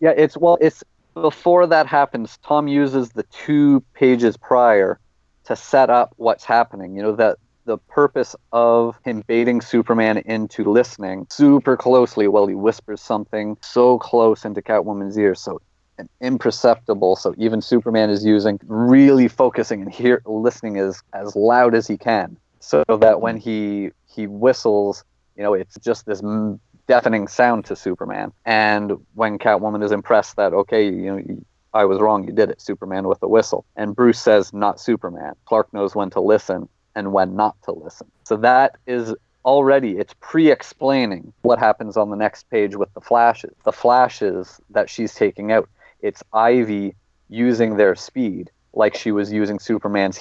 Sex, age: male, 30-49